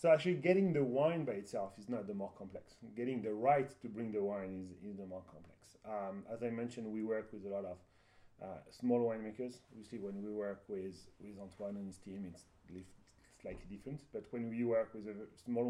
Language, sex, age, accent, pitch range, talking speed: English, male, 30-49, French, 95-120 Hz, 220 wpm